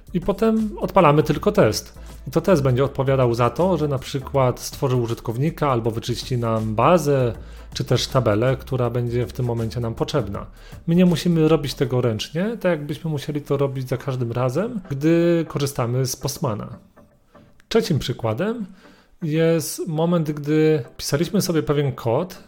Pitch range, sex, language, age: 125-155 Hz, male, Polish, 30-49